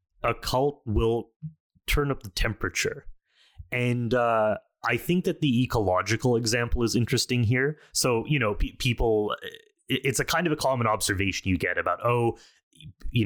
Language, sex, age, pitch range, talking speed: English, male, 30-49, 100-130 Hz, 155 wpm